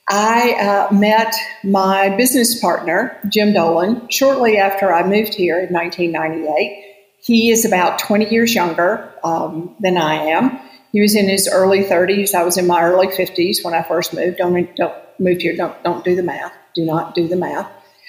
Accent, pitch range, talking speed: American, 175-230 Hz, 180 wpm